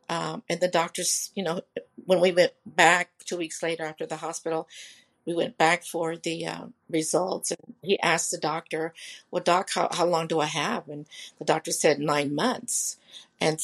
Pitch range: 160-195 Hz